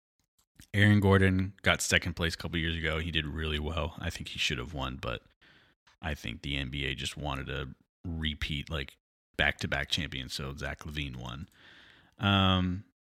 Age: 30-49